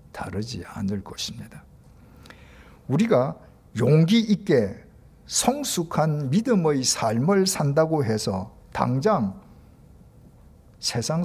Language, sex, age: Korean, male, 50-69